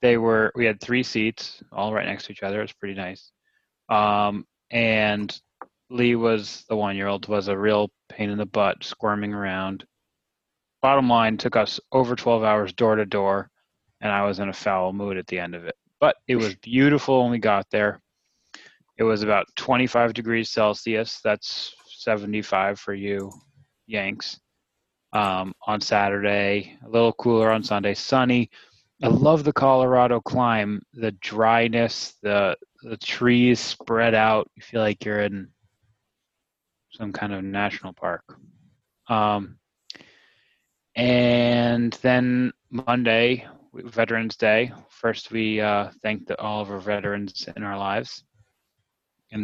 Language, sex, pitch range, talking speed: English, male, 100-120 Hz, 145 wpm